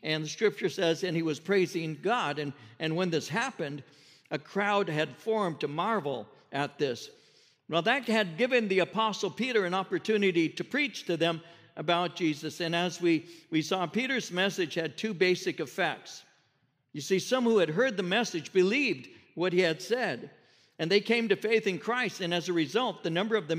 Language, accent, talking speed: English, American, 195 wpm